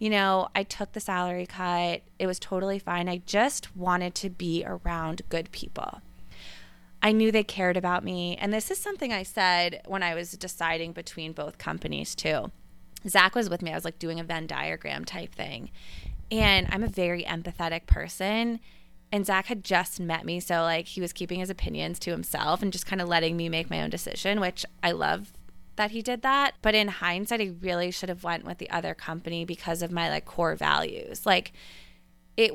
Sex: female